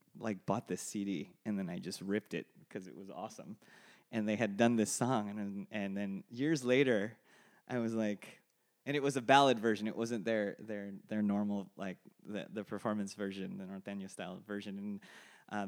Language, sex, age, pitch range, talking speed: English, male, 20-39, 100-135 Hz, 200 wpm